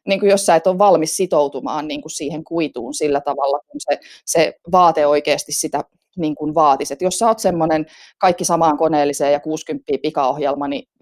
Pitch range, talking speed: 150-200 Hz, 190 wpm